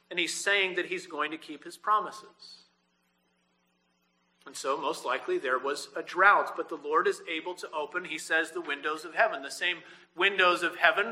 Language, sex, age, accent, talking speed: English, male, 40-59, American, 195 wpm